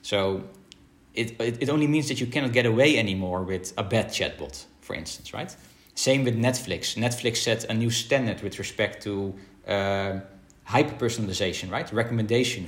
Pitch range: 100-125 Hz